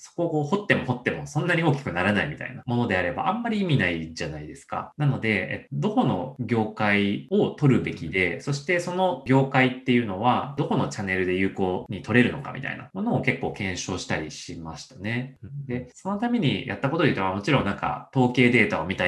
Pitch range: 105-145 Hz